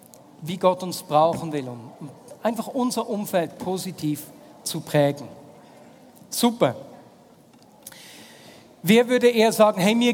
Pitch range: 155-205 Hz